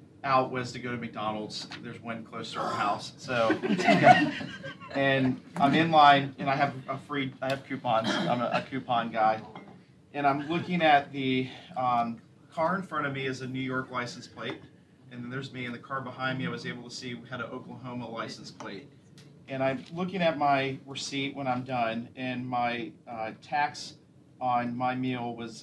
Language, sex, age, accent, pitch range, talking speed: English, male, 40-59, American, 120-140 Hz, 200 wpm